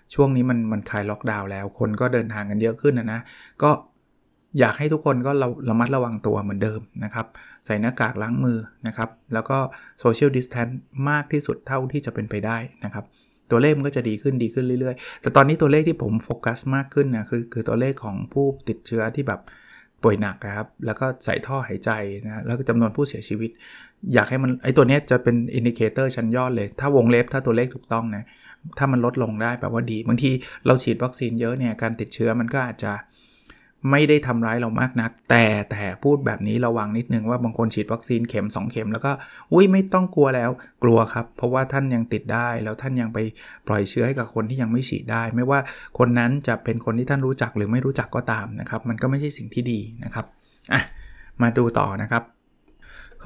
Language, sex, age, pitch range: Thai, male, 20-39, 110-130 Hz